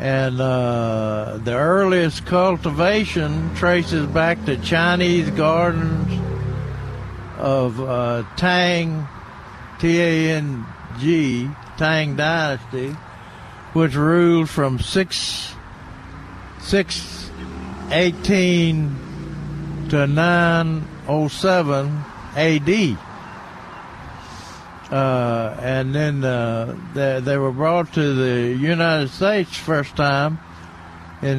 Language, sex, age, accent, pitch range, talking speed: English, male, 60-79, American, 115-160 Hz, 75 wpm